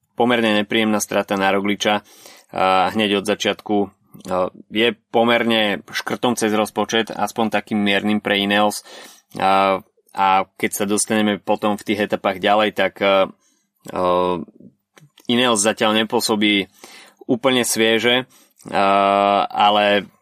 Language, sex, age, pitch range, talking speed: Slovak, male, 20-39, 95-110 Hz, 100 wpm